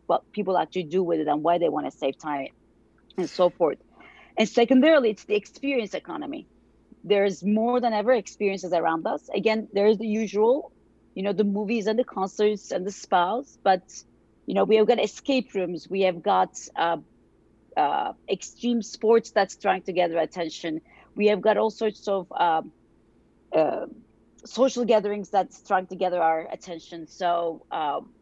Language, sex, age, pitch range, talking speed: English, female, 40-59, 175-225 Hz, 180 wpm